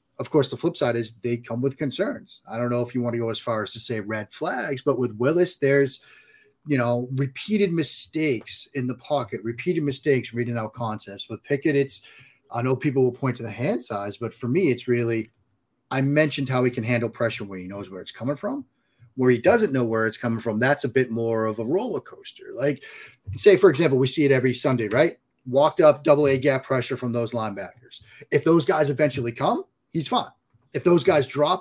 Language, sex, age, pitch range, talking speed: English, male, 30-49, 120-150 Hz, 225 wpm